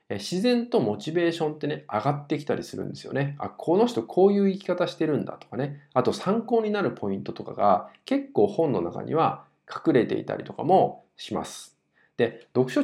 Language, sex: Japanese, male